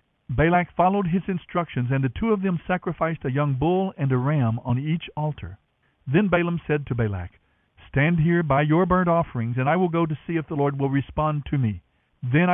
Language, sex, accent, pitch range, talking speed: English, male, American, 125-170 Hz, 210 wpm